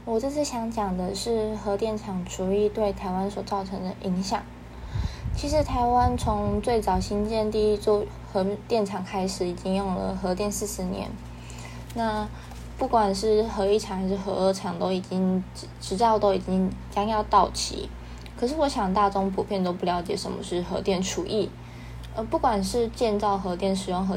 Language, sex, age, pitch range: Chinese, female, 20-39, 185-215 Hz